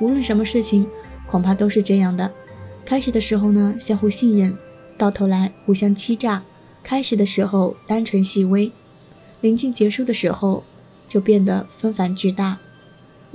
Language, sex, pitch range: Chinese, female, 195-225 Hz